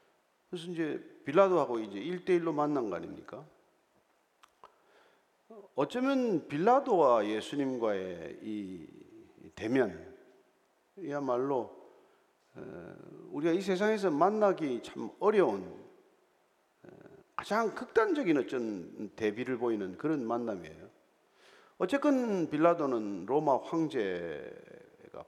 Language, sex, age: Korean, male, 50-69